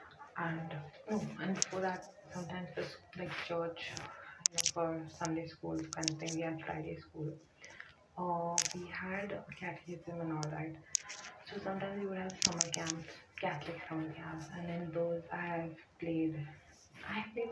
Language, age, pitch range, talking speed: English, 20-39, 160-180 Hz, 160 wpm